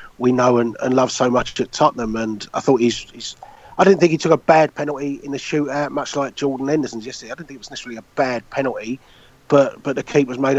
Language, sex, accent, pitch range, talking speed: English, male, British, 130-145 Hz, 250 wpm